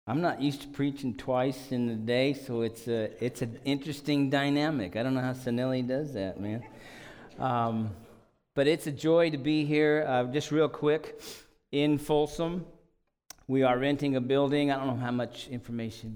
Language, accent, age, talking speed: English, American, 40-59, 180 wpm